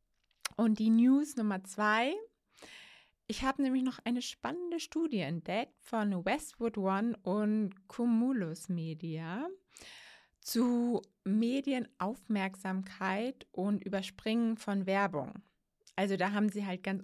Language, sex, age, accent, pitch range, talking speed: German, female, 20-39, German, 195-235 Hz, 110 wpm